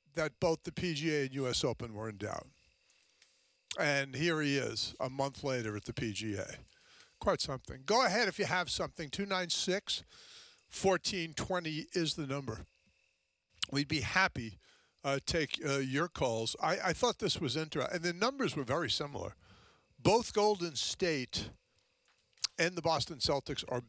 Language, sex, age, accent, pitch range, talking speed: English, male, 50-69, American, 135-190 Hz, 150 wpm